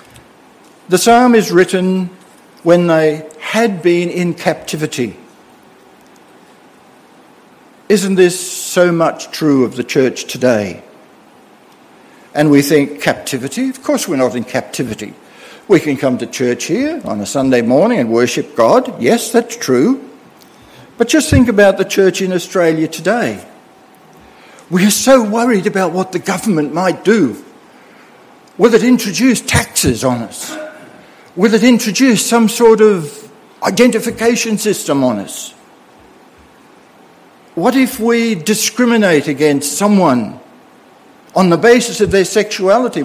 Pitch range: 180-265 Hz